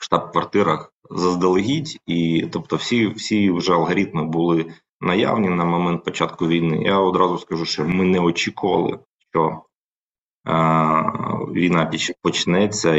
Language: Ukrainian